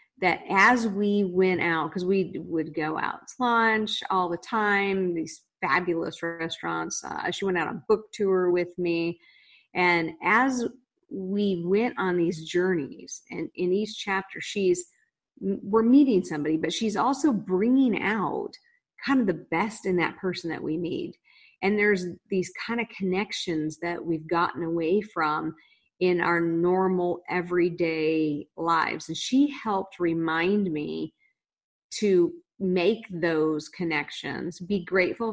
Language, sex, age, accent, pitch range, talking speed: English, female, 40-59, American, 165-205 Hz, 145 wpm